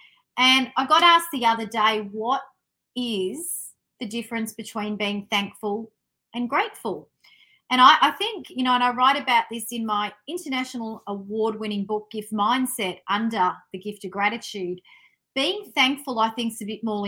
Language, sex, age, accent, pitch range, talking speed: English, female, 40-59, Australian, 200-255 Hz, 165 wpm